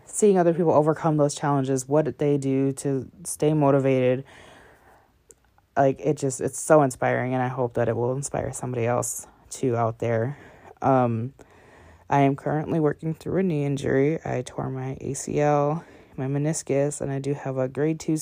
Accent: American